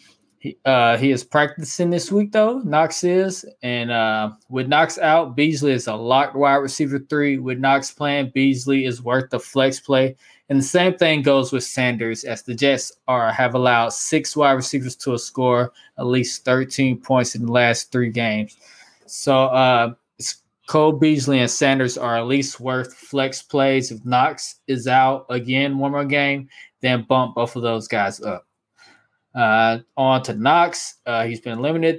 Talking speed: 175 wpm